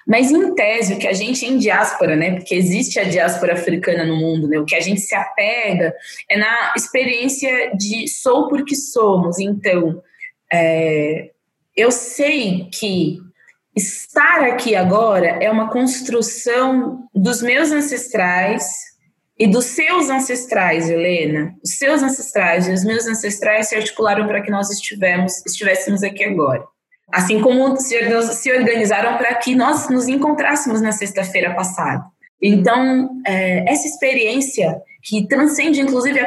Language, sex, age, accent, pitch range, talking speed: Portuguese, female, 20-39, Brazilian, 190-260 Hz, 135 wpm